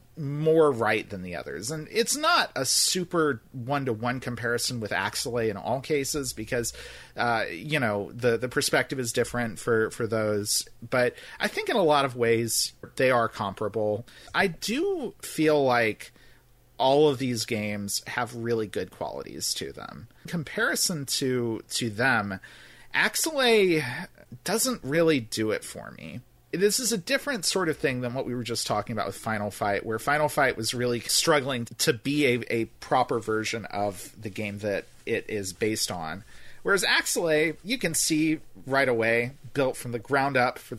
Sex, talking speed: male, 170 wpm